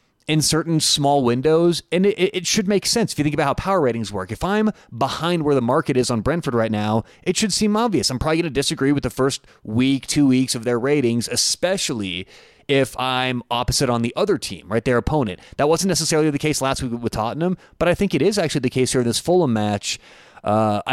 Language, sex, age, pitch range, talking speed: English, male, 30-49, 120-155 Hz, 230 wpm